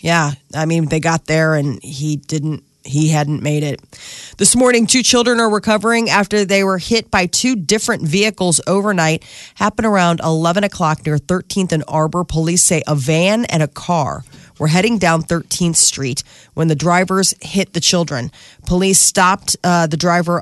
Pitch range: 160-195 Hz